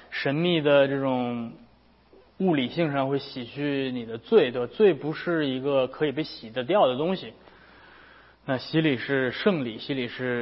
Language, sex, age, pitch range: Chinese, male, 20-39, 120-155 Hz